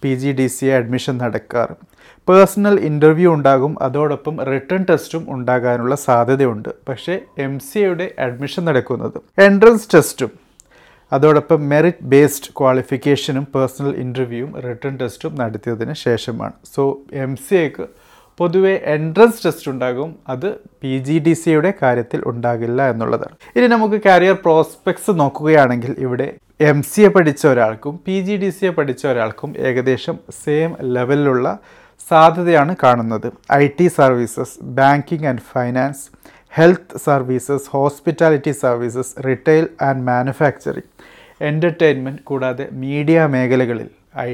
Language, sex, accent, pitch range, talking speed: Malayalam, male, native, 130-160 Hz, 120 wpm